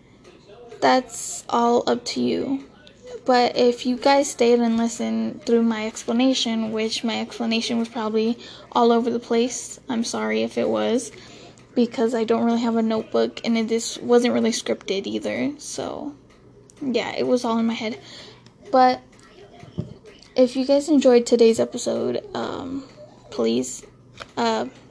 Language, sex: English, female